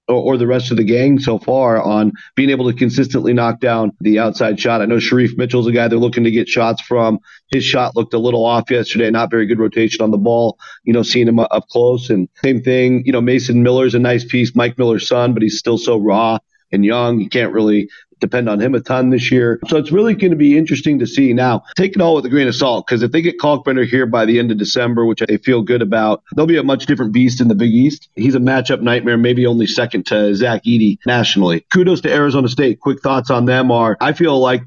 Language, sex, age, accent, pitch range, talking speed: English, male, 40-59, American, 115-135 Hz, 255 wpm